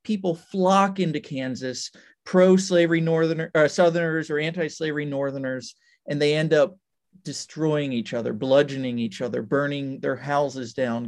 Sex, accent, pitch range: male, American, 135-175 Hz